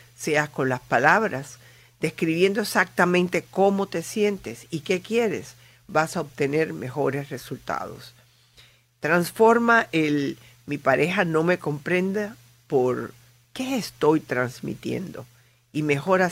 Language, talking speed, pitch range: Spanish, 110 wpm, 125-180 Hz